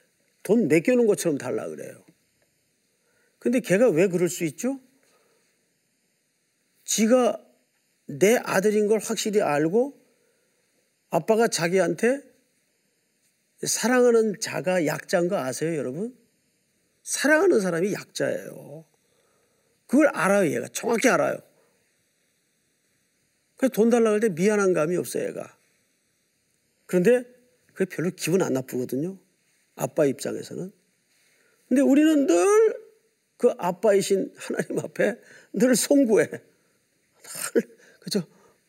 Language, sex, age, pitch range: Korean, male, 40-59, 180-255 Hz